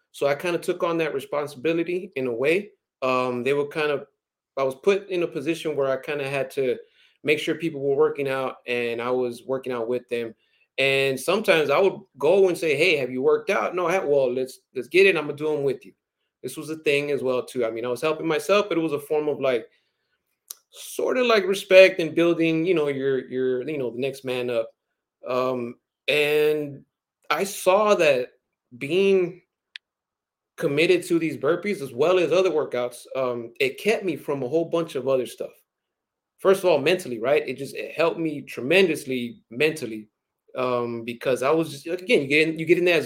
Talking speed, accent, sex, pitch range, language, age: 210 wpm, American, male, 130-180 Hz, English, 30-49